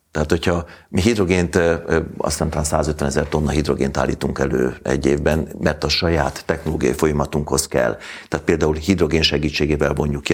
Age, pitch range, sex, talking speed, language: 60-79, 70-85 Hz, male, 145 wpm, Hungarian